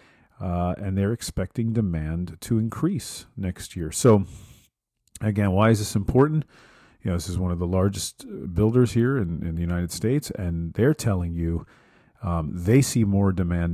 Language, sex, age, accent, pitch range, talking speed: English, male, 40-59, American, 90-120 Hz, 170 wpm